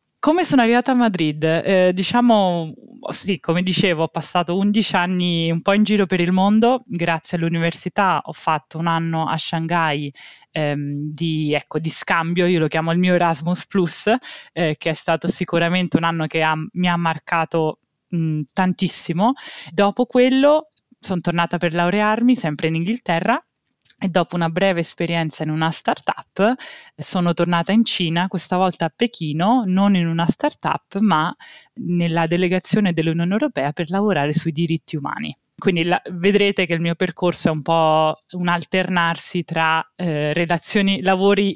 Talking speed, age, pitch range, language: 155 wpm, 20-39, 160-195 Hz, Italian